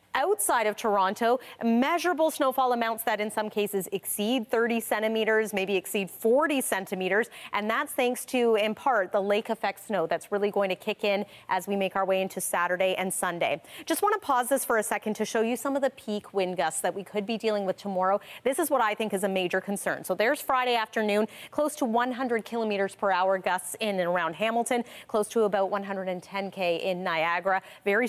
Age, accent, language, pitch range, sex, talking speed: 30-49, American, English, 195-245 Hz, female, 205 wpm